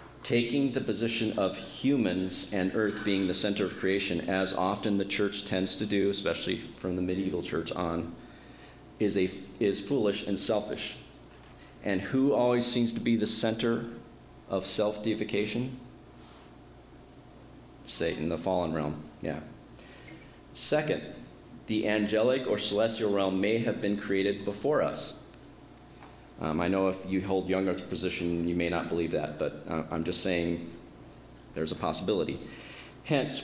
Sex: male